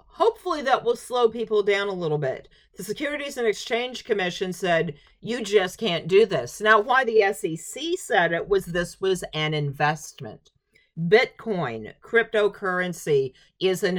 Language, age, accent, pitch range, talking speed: English, 50-69, American, 155-220 Hz, 150 wpm